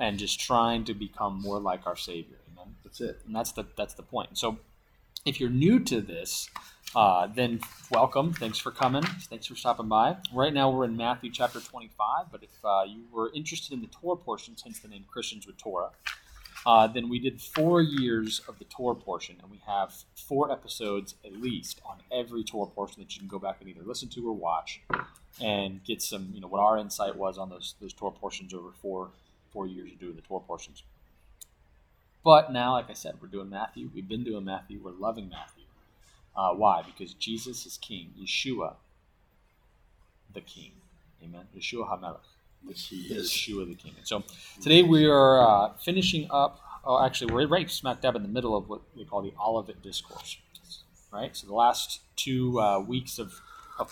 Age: 30-49